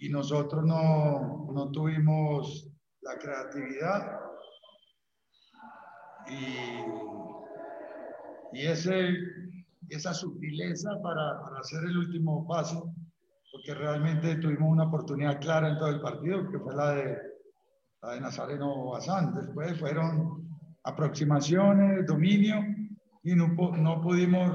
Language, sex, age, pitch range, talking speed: Spanish, male, 50-69, 150-180 Hz, 105 wpm